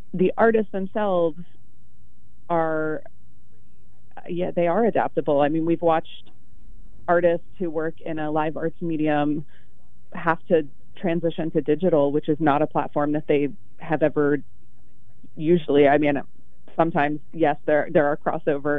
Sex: female